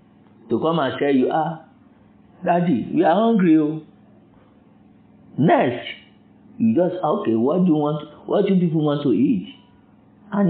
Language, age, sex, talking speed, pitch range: English, 50-69, male, 150 wpm, 145-235 Hz